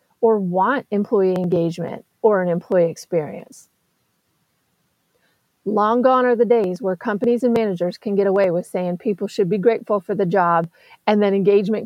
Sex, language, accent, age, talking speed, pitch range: female, English, American, 40-59, 160 wpm, 195-245 Hz